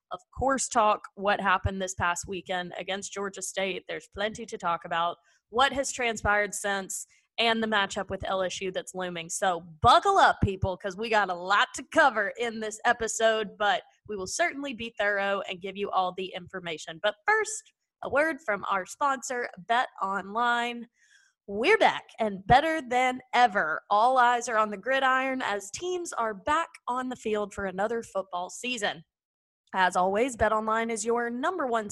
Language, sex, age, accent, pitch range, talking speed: English, female, 20-39, American, 195-250 Hz, 175 wpm